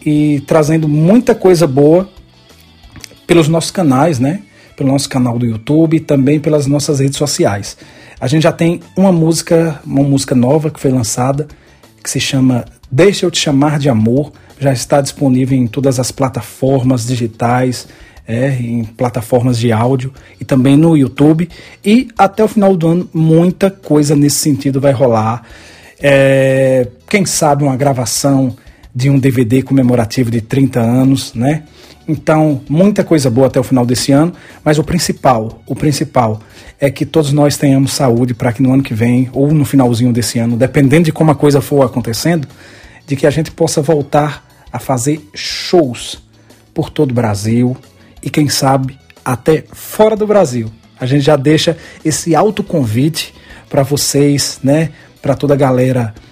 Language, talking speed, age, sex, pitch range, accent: Portuguese, 165 wpm, 40-59, male, 125-155 Hz, Brazilian